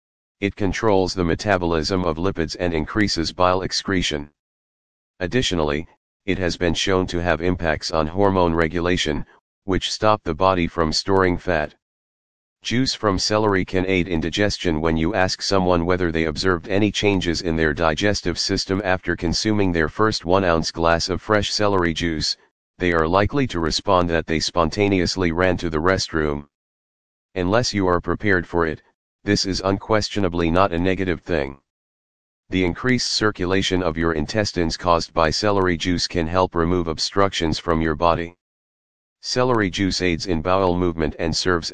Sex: male